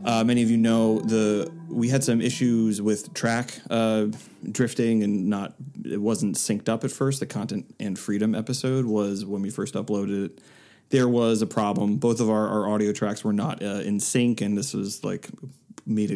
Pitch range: 105-125 Hz